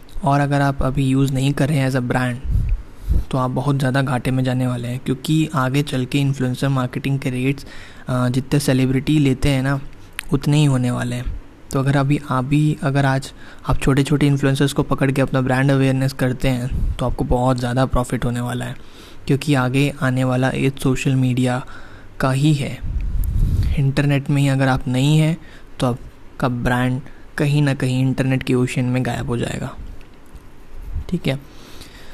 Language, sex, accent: Hindi, male, native